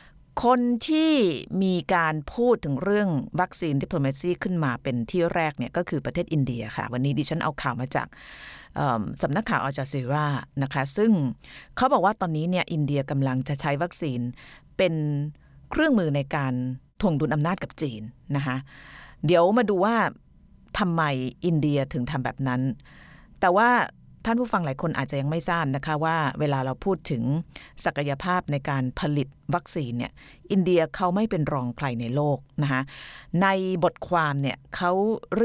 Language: Thai